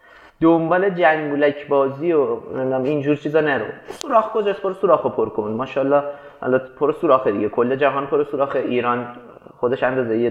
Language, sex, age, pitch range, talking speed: Persian, male, 30-49, 125-155 Hz, 150 wpm